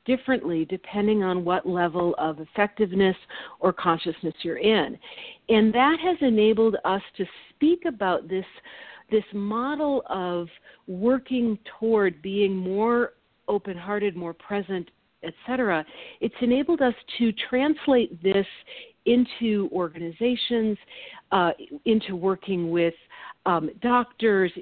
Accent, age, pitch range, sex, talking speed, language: American, 50-69, 180-235 Hz, female, 110 wpm, English